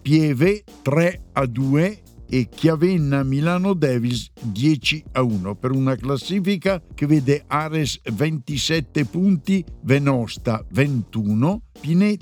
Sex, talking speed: male, 110 wpm